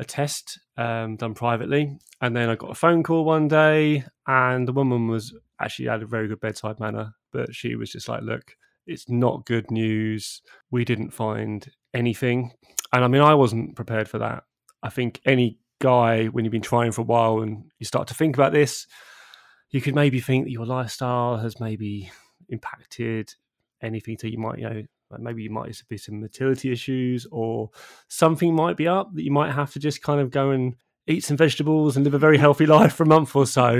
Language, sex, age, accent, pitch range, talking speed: English, male, 20-39, British, 115-145 Hz, 210 wpm